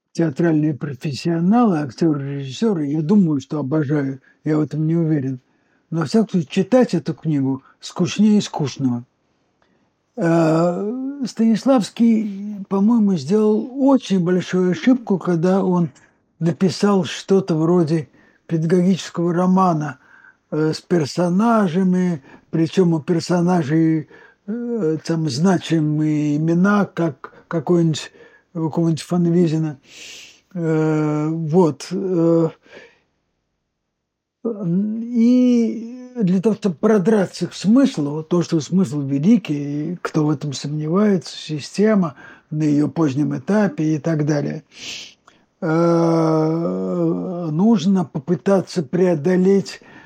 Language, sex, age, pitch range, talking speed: Russian, male, 60-79, 155-200 Hz, 95 wpm